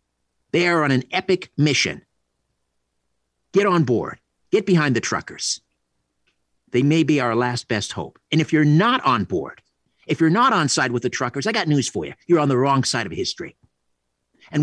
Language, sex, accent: English, male, American